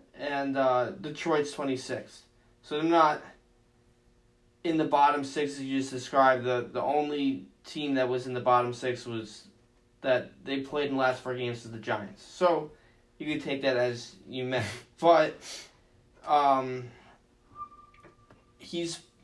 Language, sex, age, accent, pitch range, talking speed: English, male, 10-29, American, 120-150 Hz, 150 wpm